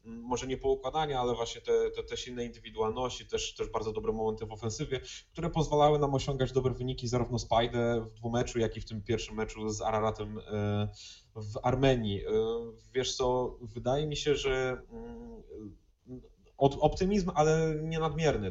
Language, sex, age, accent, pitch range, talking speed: Polish, male, 20-39, native, 115-140 Hz, 155 wpm